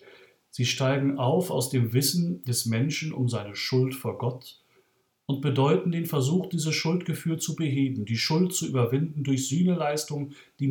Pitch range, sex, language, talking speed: 120-150 Hz, male, German, 155 wpm